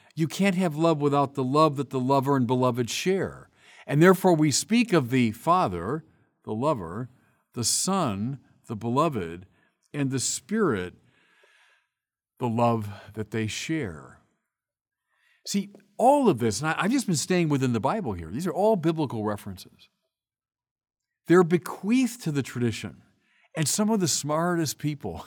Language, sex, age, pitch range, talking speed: English, male, 50-69, 120-185 Hz, 150 wpm